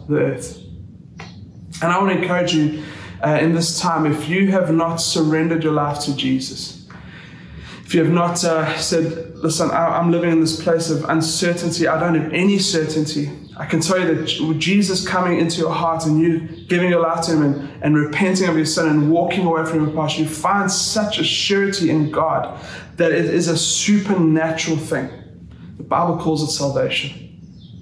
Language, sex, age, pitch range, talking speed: English, male, 20-39, 155-175 Hz, 190 wpm